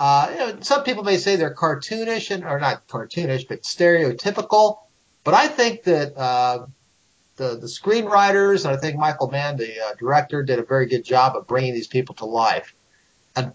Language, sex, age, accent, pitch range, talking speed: English, male, 50-69, American, 130-185 Hz, 175 wpm